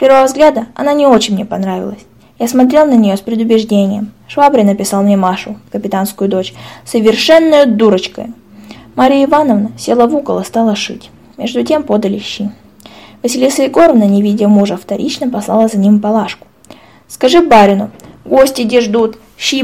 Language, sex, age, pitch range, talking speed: Russian, female, 20-39, 205-255 Hz, 155 wpm